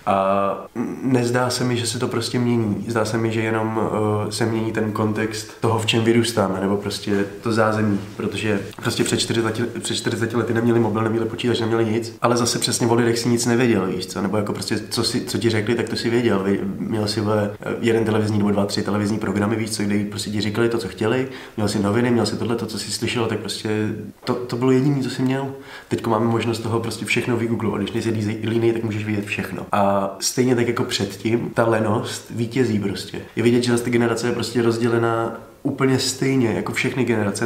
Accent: native